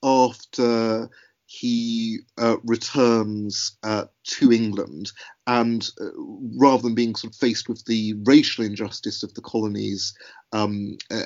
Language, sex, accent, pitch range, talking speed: English, male, British, 105-125 Hz, 125 wpm